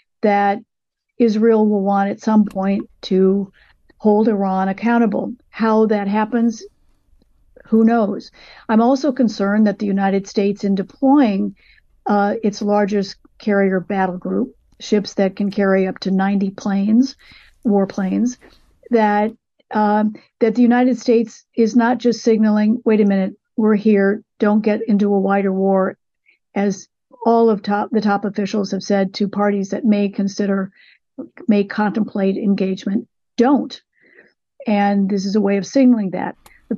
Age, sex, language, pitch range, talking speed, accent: 50-69, female, English, 195-230 Hz, 145 wpm, American